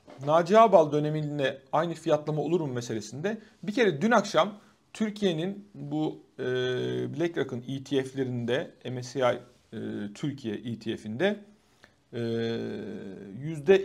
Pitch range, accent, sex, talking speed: 130-195 Hz, native, male, 85 wpm